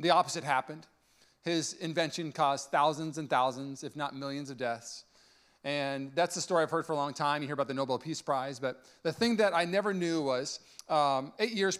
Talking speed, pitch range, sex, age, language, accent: 215 wpm, 150-195 Hz, male, 40-59, English, American